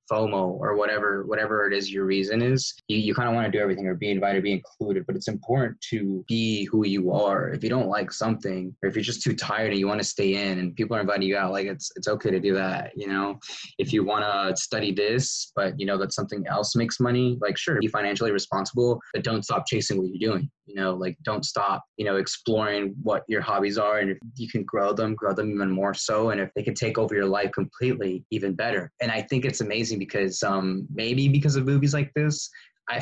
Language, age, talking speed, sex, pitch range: English, 20-39, 245 wpm, male, 95-120 Hz